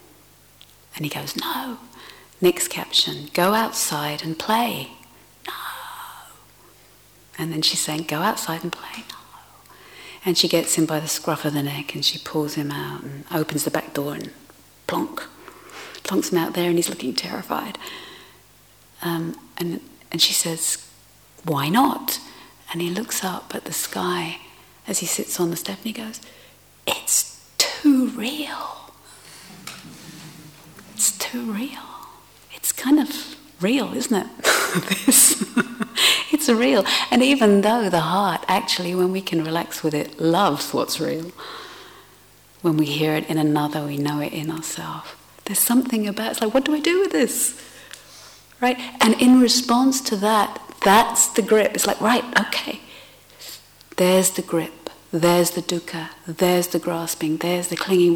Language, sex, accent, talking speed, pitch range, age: English, female, British, 155 wpm, 160-235 Hz, 40-59